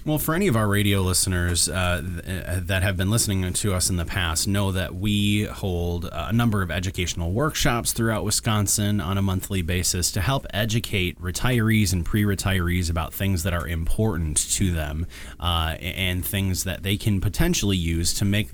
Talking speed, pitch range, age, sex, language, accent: 180 wpm, 90-110 Hz, 30-49, male, English, American